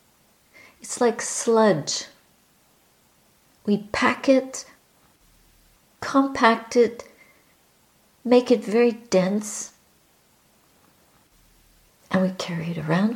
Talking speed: 80 wpm